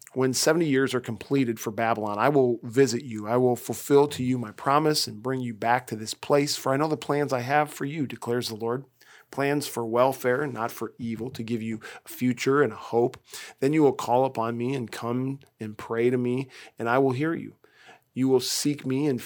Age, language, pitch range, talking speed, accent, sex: 40-59, English, 120-140 Hz, 225 wpm, American, male